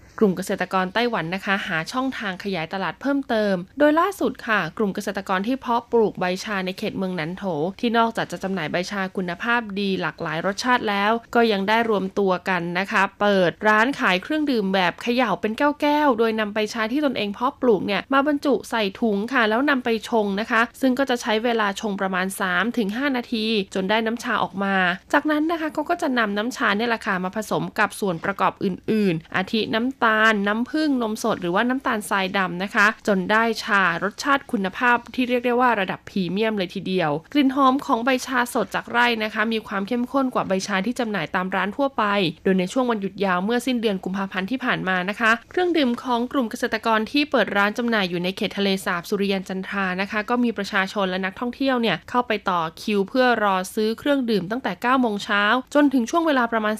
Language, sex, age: Thai, female, 20-39